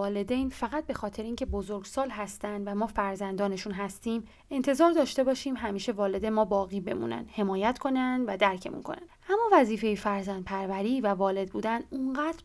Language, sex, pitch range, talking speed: Persian, female, 200-250 Hz, 150 wpm